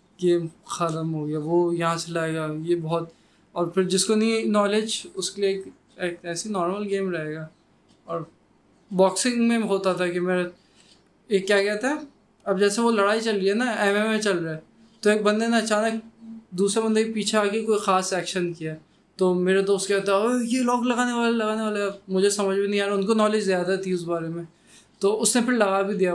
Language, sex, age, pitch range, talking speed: Urdu, male, 20-39, 175-205 Hz, 200 wpm